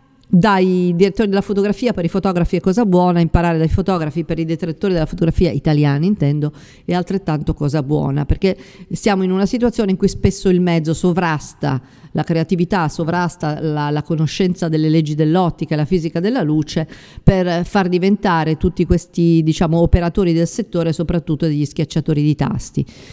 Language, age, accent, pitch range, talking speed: Italian, 50-69, native, 155-185 Hz, 165 wpm